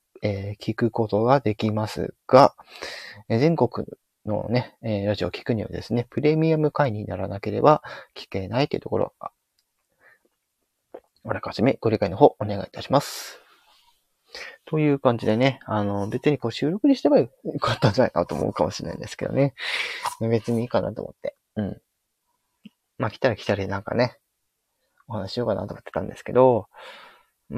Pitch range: 105-145 Hz